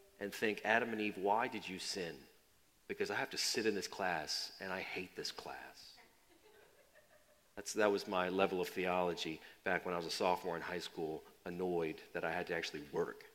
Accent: American